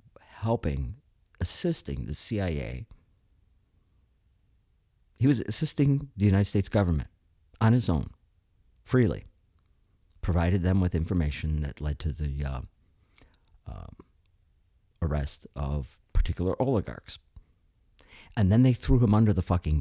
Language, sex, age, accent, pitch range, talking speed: English, male, 50-69, American, 85-105 Hz, 110 wpm